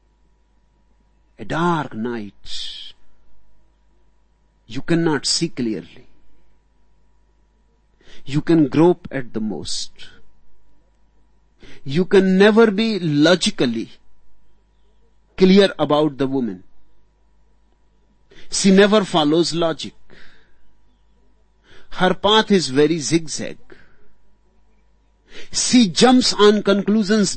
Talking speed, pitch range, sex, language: 75 wpm, 155-215 Hz, male, Hindi